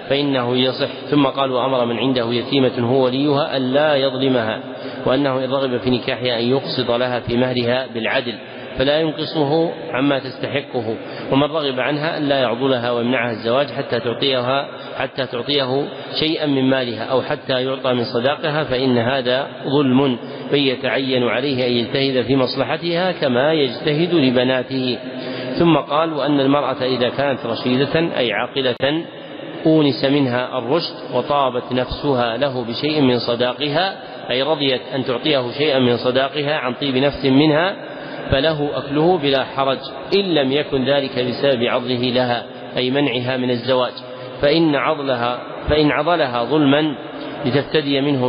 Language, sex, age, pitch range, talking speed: Arabic, male, 40-59, 125-140 Hz, 135 wpm